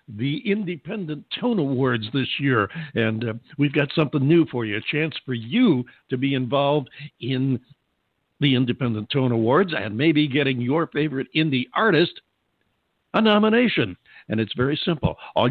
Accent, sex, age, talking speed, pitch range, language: American, male, 60-79, 155 wpm, 120-150 Hz, English